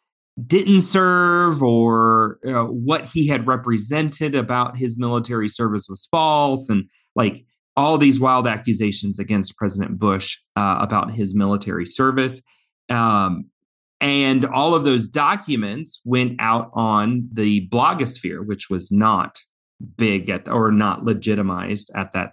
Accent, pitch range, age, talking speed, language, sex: American, 100-120 Hz, 30-49, 135 wpm, English, male